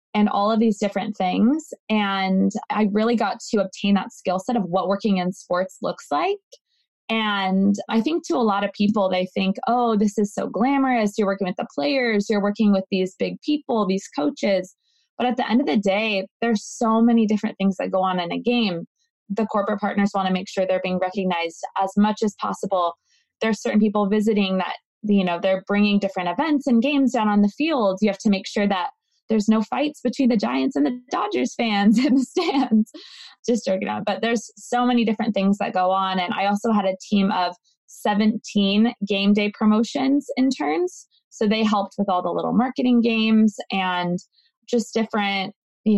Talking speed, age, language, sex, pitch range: 200 wpm, 20-39, English, female, 195-235 Hz